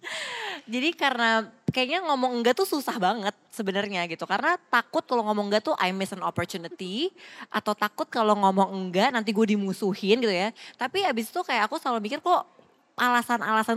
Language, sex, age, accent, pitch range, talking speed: Indonesian, female, 20-39, native, 175-220 Hz, 170 wpm